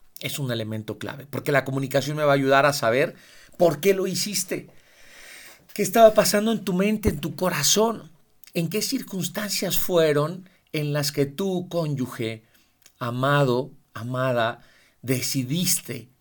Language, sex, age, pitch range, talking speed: Spanish, male, 40-59, 135-195 Hz, 140 wpm